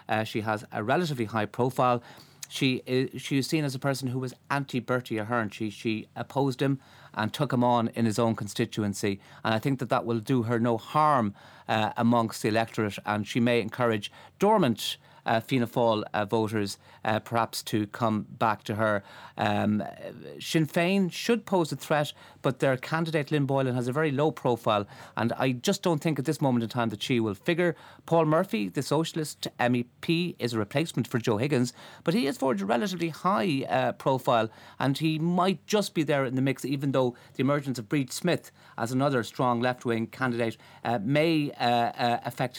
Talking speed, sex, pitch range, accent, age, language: 195 wpm, male, 115-145 Hz, Irish, 40-59, English